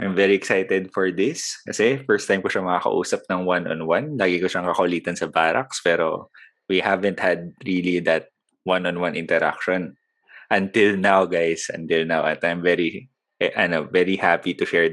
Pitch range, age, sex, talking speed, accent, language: 85-100 Hz, 20-39, male, 160 wpm, native, Filipino